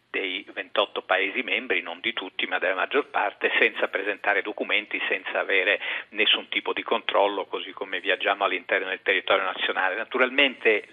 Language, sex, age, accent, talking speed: Italian, male, 50-69, native, 155 wpm